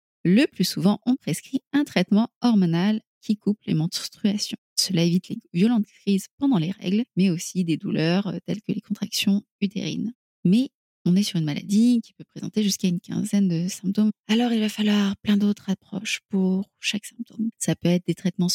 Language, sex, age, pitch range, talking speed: French, female, 20-39, 180-225 Hz, 190 wpm